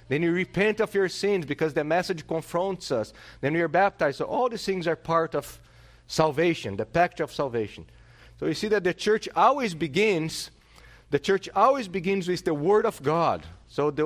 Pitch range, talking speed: 125-195 Hz, 195 wpm